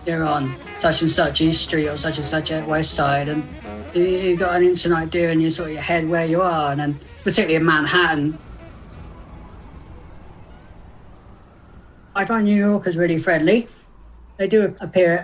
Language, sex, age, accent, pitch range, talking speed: English, female, 30-49, British, 155-180 Hz, 160 wpm